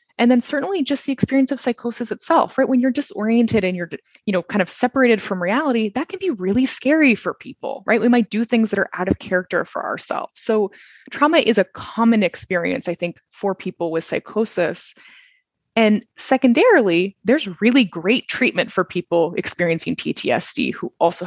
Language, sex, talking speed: English, female, 185 wpm